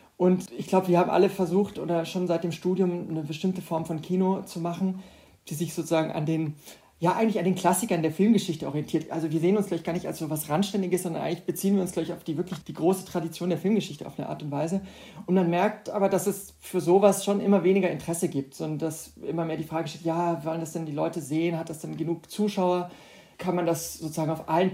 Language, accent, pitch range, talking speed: German, German, 165-190 Hz, 245 wpm